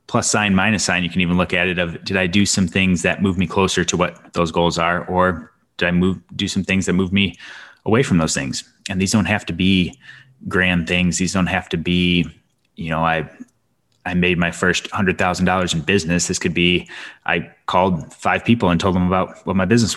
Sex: male